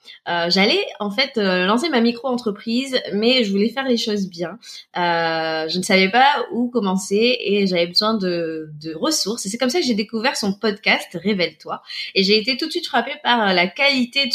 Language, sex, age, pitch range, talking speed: French, female, 20-39, 190-245 Hz, 210 wpm